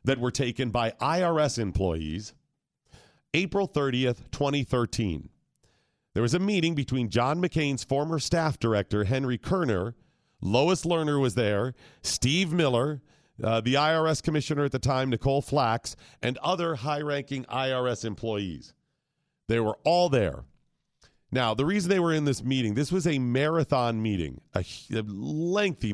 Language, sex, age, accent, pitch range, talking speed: English, male, 40-59, American, 105-140 Hz, 140 wpm